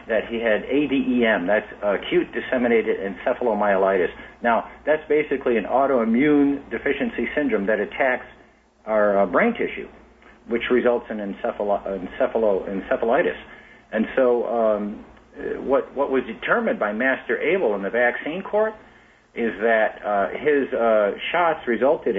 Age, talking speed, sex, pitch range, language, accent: 50-69, 125 wpm, male, 105-140 Hz, English, American